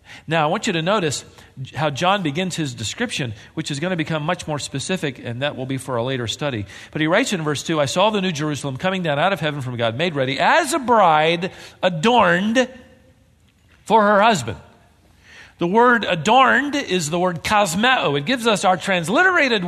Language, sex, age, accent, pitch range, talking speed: English, male, 50-69, American, 145-215 Hz, 200 wpm